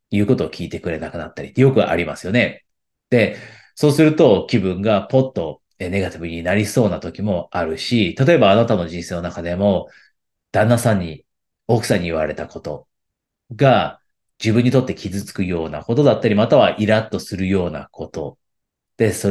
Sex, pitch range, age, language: male, 90-115 Hz, 30-49, Japanese